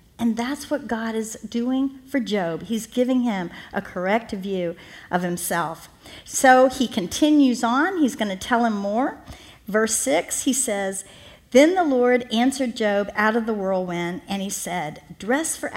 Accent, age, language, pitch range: American, 50-69, English, 205-265 Hz